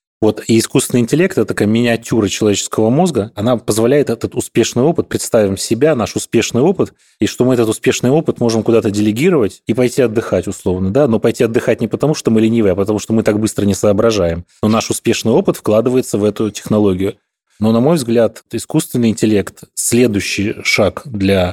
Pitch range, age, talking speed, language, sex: 105-120 Hz, 30-49, 180 wpm, Russian, male